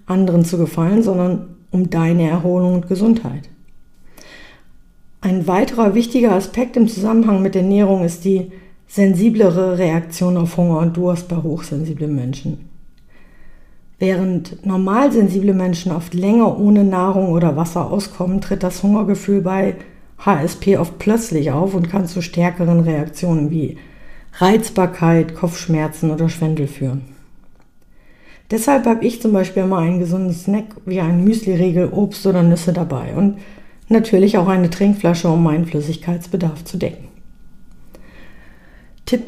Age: 50-69